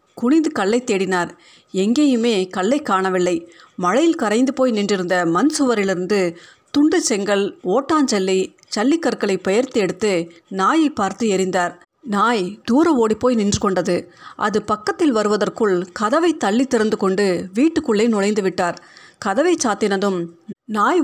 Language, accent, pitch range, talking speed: Tamil, native, 190-255 Hz, 115 wpm